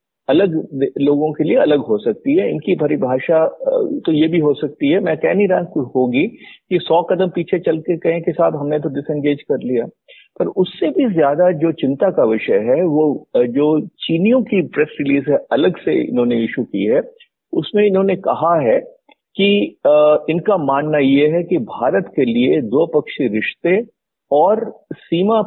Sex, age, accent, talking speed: male, 50-69, native, 175 wpm